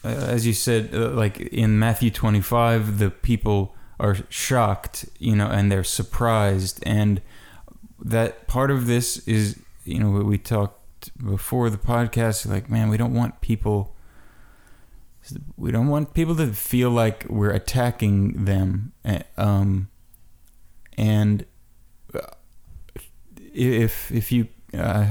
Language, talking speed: English, 125 wpm